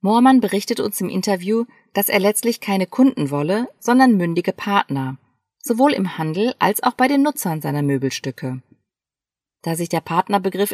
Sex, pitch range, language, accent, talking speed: female, 165-235 Hz, German, German, 155 wpm